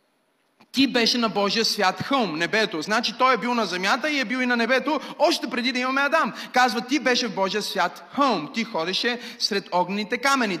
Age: 40-59